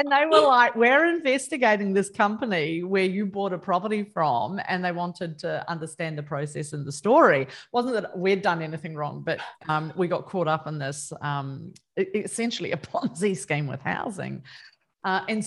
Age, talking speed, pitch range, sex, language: 30-49, 185 wpm, 150-205 Hz, female, English